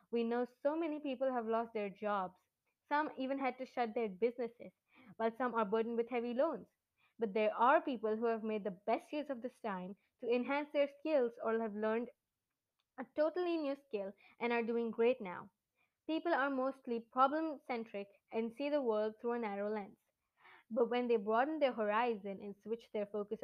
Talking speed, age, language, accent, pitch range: 190 wpm, 20-39, English, Indian, 215-270 Hz